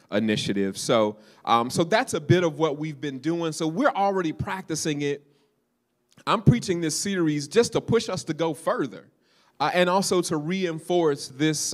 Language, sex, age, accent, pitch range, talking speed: English, male, 30-49, American, 120-155 Hz, 175 wpm